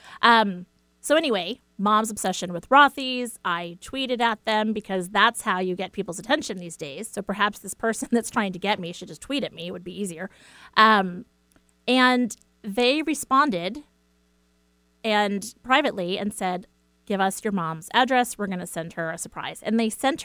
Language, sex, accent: English, female, American